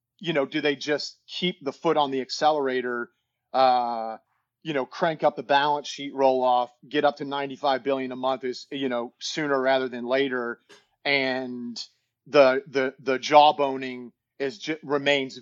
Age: 40-59